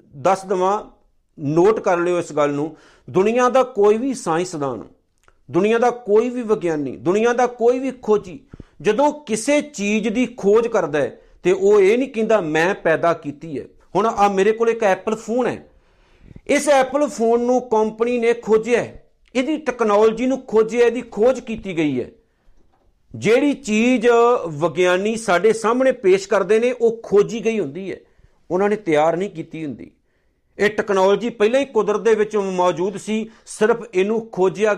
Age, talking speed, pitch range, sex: 50-69, 160 wpm, 185-240 Hz, male